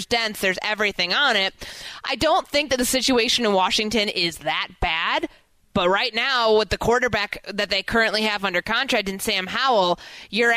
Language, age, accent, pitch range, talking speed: English, 20-39, American, 185-230 Hz, 180 wpm